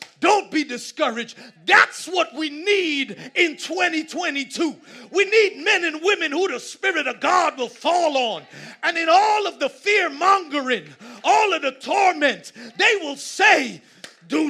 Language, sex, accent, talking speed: English, male, American, 155 wpm